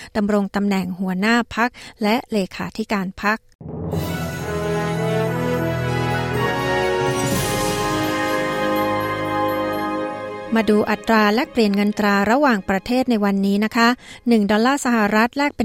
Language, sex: Thai, female